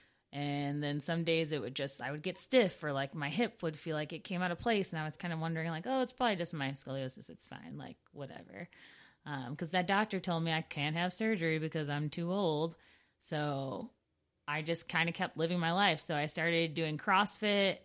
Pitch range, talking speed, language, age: 145-180 Hz, 230 wpm, English, 20-39